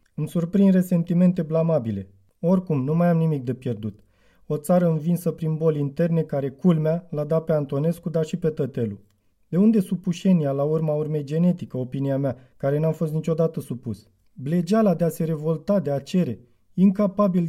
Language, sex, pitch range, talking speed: Romanian, male, 140-180 Hz, 170 wpm